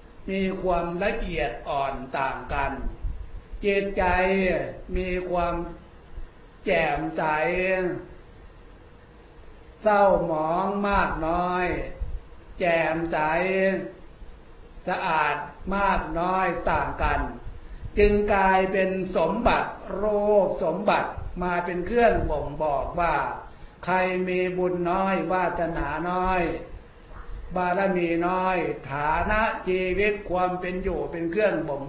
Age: 60-79